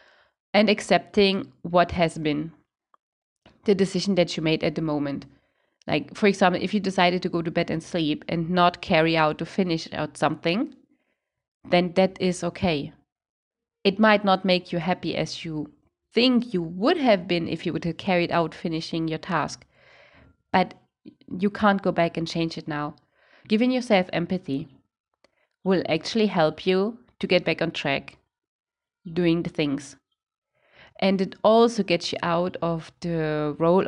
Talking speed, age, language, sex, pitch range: 165 wpm, 30-49, English, female, 160-200 Hz